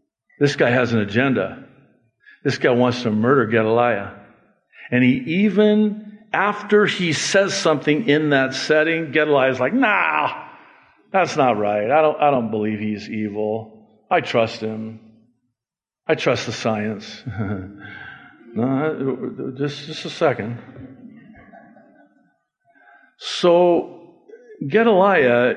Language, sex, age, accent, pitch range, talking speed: English, male, 50-69, American, 120-155 Hz, 115 wpm